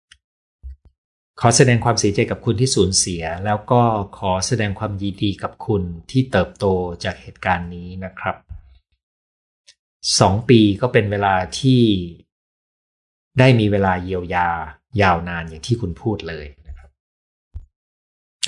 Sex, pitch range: male, 85-120 Hz